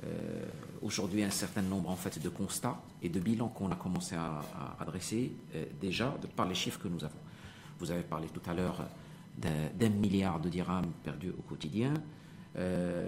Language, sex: French, male